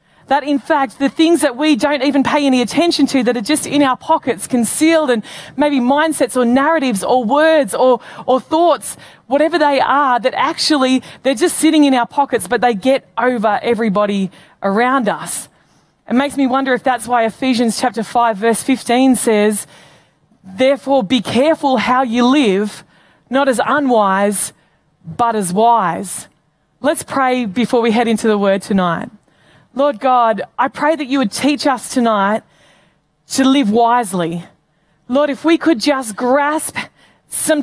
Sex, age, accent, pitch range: female, 20-39, Australian, 220-275 Hz